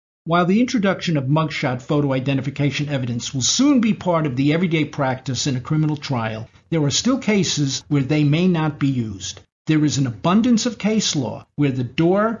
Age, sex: 50-69, male